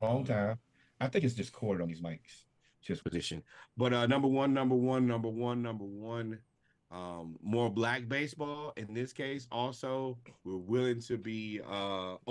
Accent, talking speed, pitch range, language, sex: American, 170 wpm, 100-120 Hz, English, male